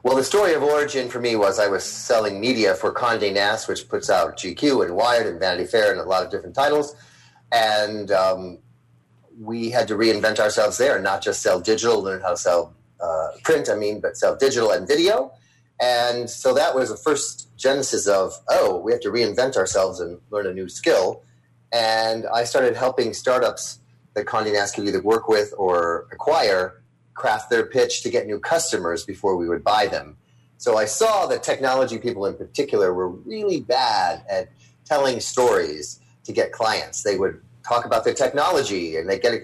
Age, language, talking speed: 30-49, English, 195 wpm